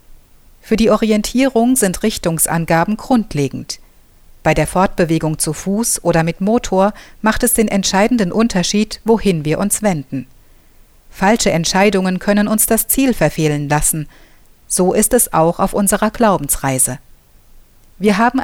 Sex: female